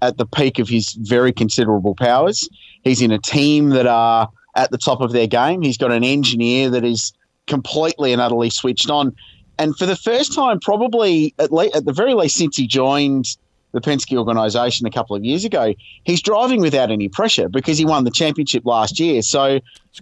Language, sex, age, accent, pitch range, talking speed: English, male, 30-49, Australian, 115-140 Hz, 200 wpm